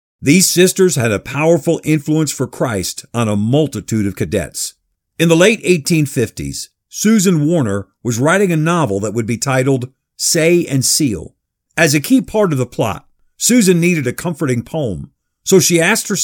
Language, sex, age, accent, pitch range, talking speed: English, male, 50-69, American, 120-170 Hz, 170 wpm